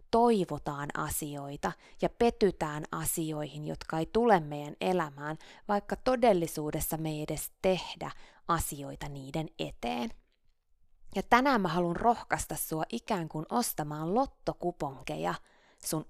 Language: Finnish